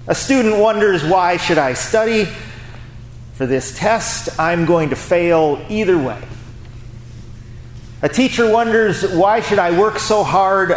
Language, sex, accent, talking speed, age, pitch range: English, male, American, 140 wpm, 40-59, 120-180 Hz